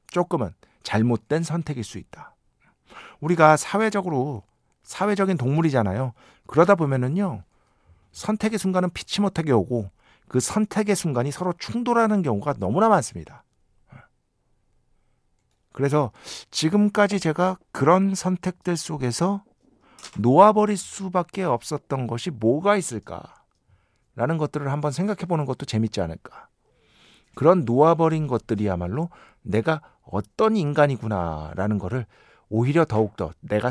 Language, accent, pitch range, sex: Korean, native, 110-180 Hz, male